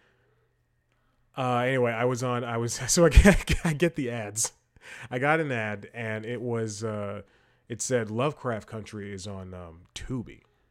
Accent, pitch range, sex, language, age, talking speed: American, 105-125 Hz, male, English, 30-49, 170 wpm